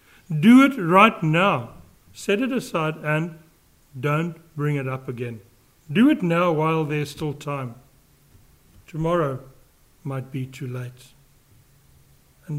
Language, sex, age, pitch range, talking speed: English, male, 60-79, 140-180 Hz, 125 wpm